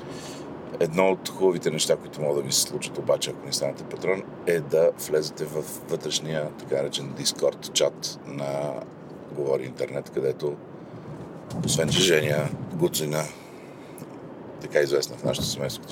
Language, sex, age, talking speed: Bulgarian, male, 50-69, 140 wpm